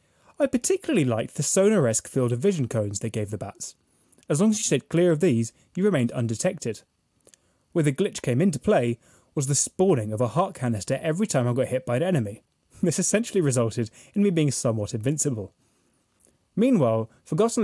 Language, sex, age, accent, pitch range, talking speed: English, male, 20-39, British, 120-175 Hz, 185 wpm